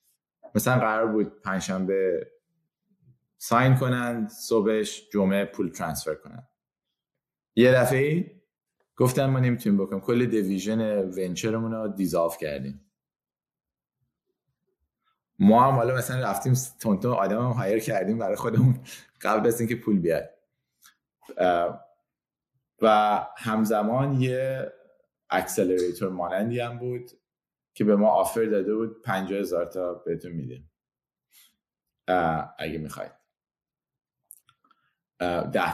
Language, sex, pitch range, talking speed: Persian, male, 95-125 Hz, 100 wpm